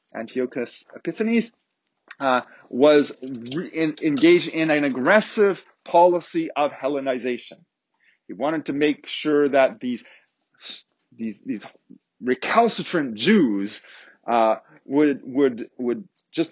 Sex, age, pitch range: male, 30-49, 130-200 Hz